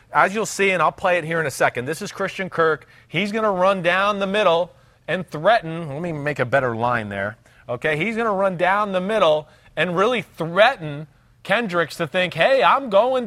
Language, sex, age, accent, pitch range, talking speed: English, male, 40-59, American, 155-215 Hz, 215 wpm